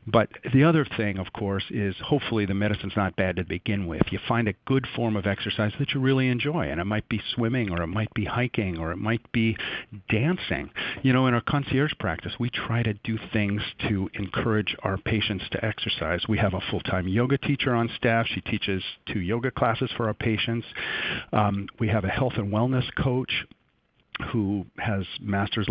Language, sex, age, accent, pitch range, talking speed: English, male, 50-69, American, 100-130 Hz, 200 wpm